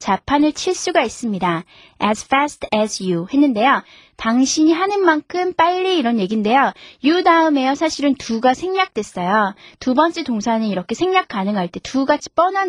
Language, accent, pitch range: Korean, native, 205-315 Hz